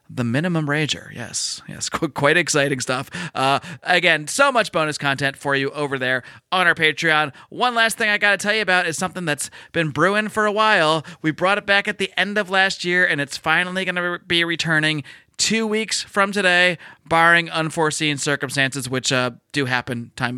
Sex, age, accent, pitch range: male, 30-49, American, 140-185 Hz